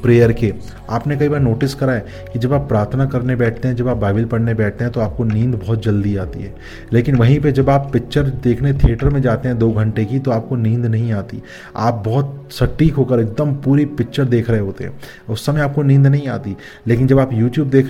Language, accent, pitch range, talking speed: English, Indian, 115-140 Hz, 185 wpm